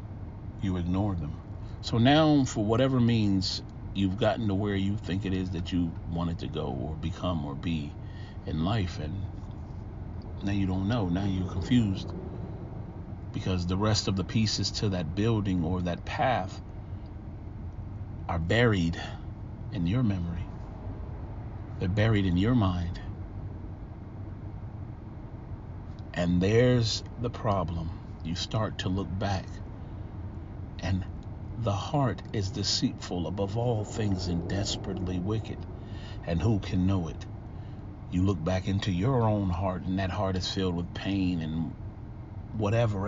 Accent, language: American, English